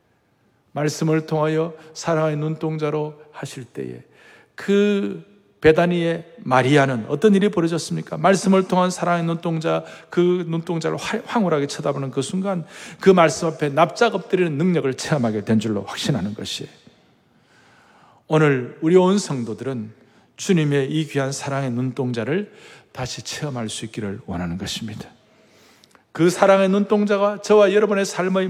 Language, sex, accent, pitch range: Korean, male, native, 155-230 Hz